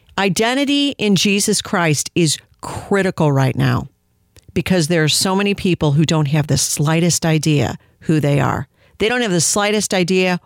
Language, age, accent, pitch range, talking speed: English, 50-69, American, 155-210 Hz, 165 wpm